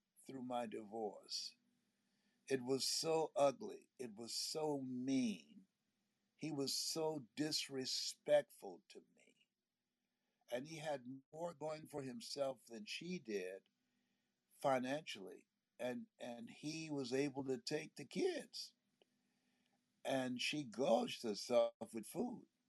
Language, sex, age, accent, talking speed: English, male, 60-79, American, 115 wpm